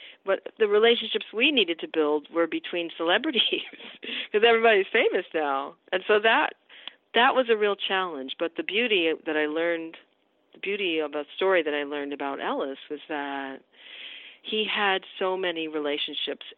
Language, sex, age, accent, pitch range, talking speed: English, female, 40-59, American, 155-215 Hz, 165 wpm